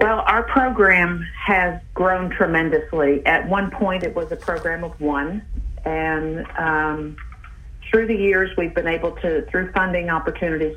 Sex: female